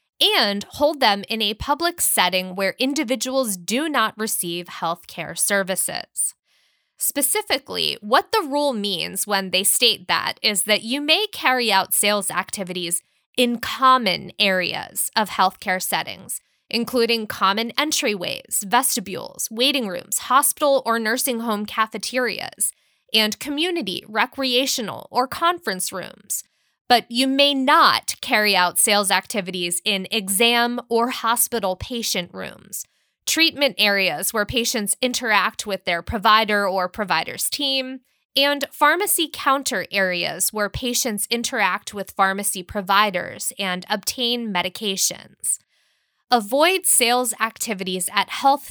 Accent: American